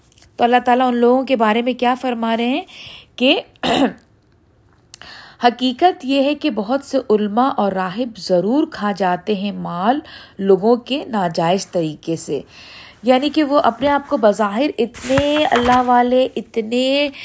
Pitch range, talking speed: 205-260 Hz, 145 wpm